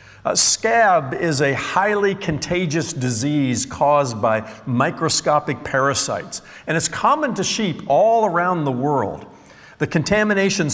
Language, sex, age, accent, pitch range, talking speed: English, male, 50-69, American, 130-185 Hz, 125 wpm